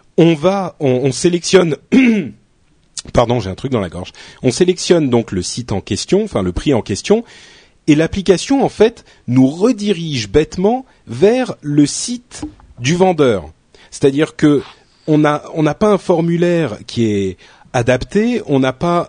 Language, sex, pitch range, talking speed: French, male, 115-175 Hz, 160 wpm